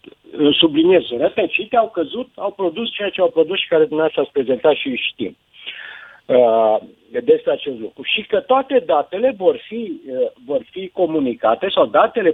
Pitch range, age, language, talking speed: 165-255 Hz, 50-69, Romanian, 165 wpm